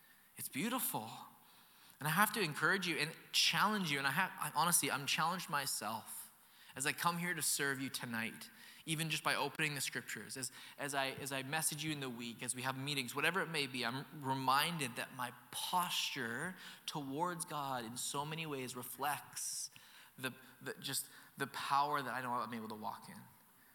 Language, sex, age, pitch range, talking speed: English, male, 20-39, 120-145 Hz, 190 wpm